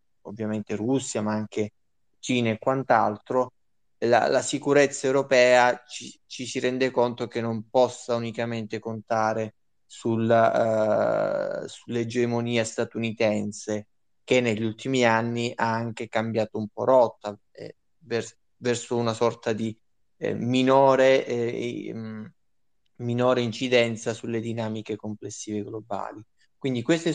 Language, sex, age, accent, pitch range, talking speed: Italian, male, 20-39, native, 105-120 Hz, 110 wpm